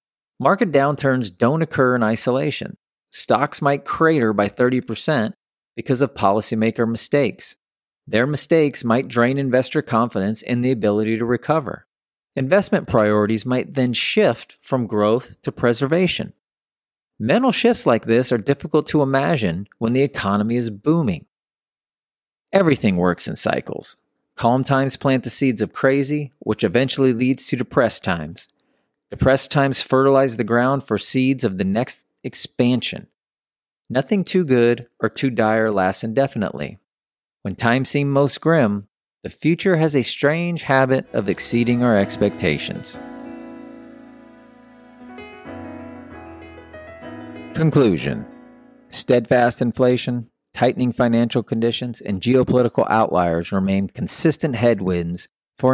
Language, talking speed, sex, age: English, 120 wpm, male, 40-59